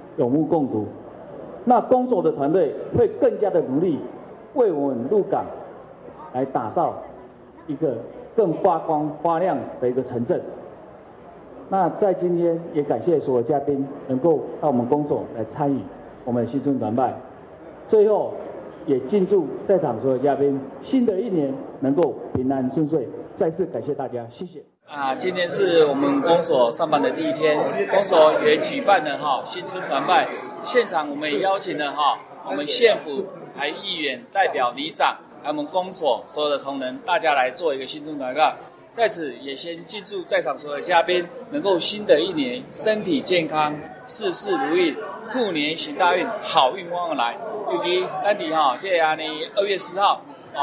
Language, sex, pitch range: Chinese, male, 145-225 Hz